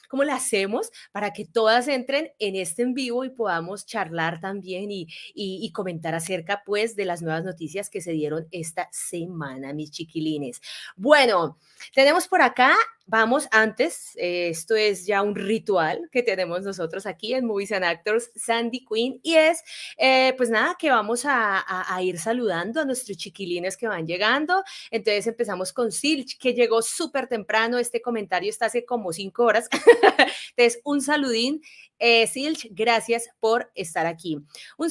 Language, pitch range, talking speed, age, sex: Spanish, 185-255 Hz, 165 wpm, 30-49, female